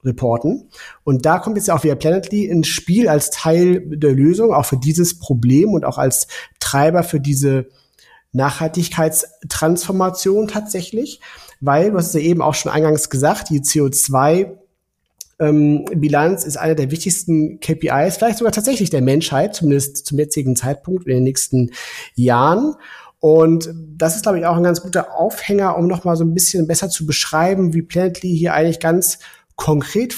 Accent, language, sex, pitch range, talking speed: German, German, male, 145-180 Hz, 160 wpm